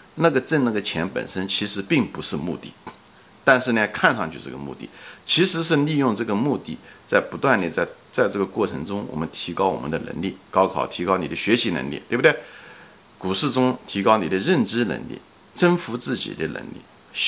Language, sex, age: Chinese, male, 50-69